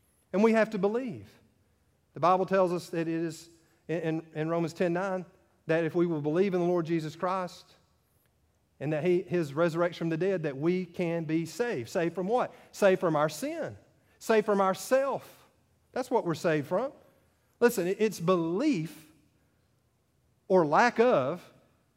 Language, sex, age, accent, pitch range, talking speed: English, male, 40-59, American, 150-195 Hz, 170 wpm